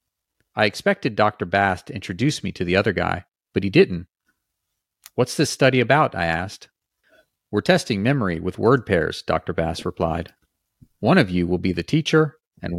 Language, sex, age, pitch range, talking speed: English, male, 40-59, 85-110 Hz, 175 wpm